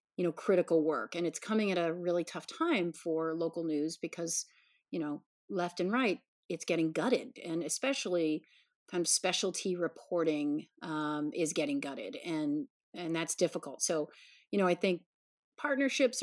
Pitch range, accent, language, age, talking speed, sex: 165-225 Hz, American, English, 40-59, 165 wpm, female